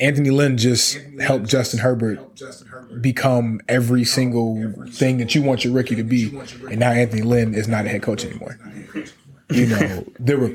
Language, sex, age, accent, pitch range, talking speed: English, male, 20-39, American, 100-120 Hz, 175 wpm